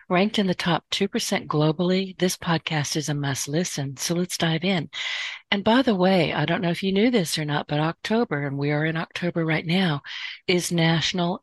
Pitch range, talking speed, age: 145-180 Hz, 205 wpm, 50-69